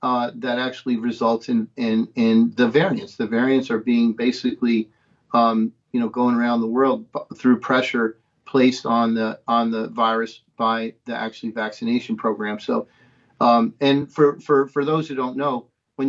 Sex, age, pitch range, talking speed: male, 50-69, 115-140 Hz, 170 wpm